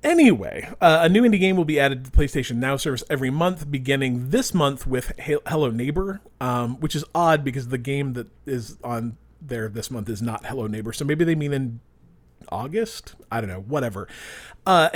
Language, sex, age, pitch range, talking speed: English, male, 40-59, 115-160 Hz, 200 wpm